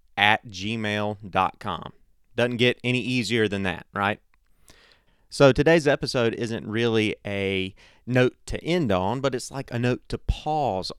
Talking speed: 140 wpm